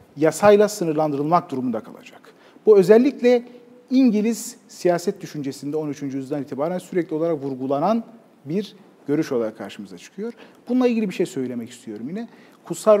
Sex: male